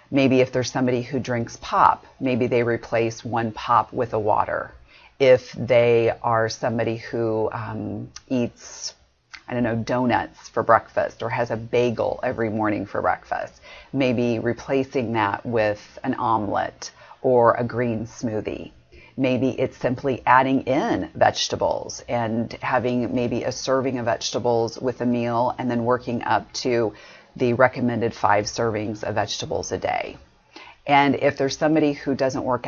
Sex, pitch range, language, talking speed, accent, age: female, 115-140 Hz, English, 150 wpm, American, 40-59